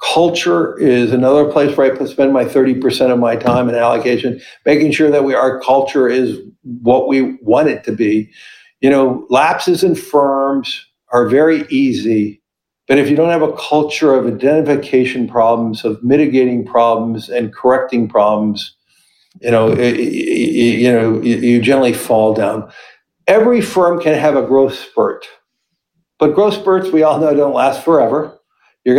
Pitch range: 125-155 Hz